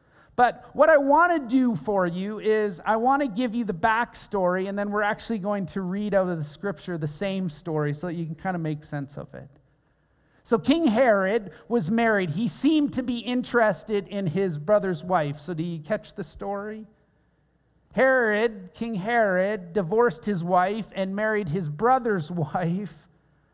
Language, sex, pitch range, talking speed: English, male, 160-220 Hz, 185 wpm